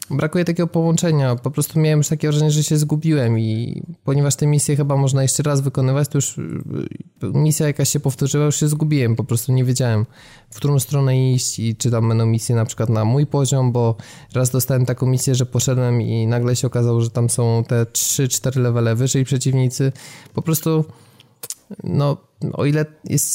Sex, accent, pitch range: male, native, 125-145 Hz